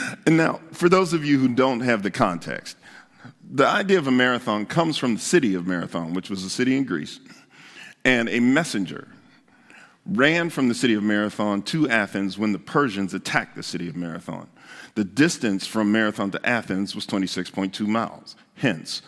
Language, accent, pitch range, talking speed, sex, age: English, American, 105-165 Hz, 180 wpm, male, 50-69